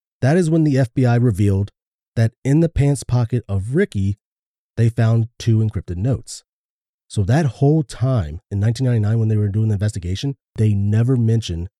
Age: 30-49